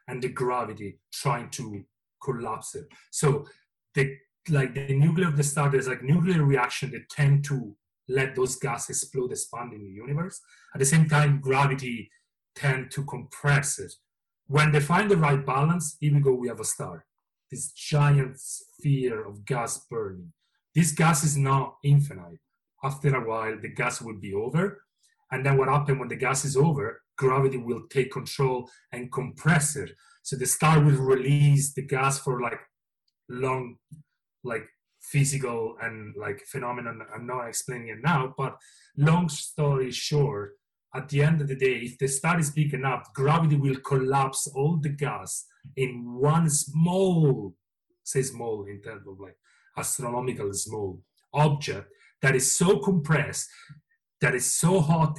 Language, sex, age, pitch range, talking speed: English, male, 30-49, 125-150 Hz, 165 wpm